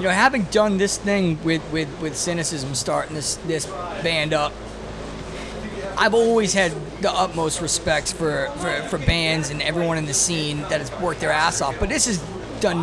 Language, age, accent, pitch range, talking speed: English, 30-49, American, 150-185 Hz, 180 wpm